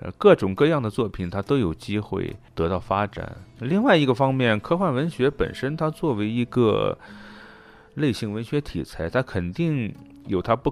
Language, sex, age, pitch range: Chinese, male, 30-49, 100-140 Hz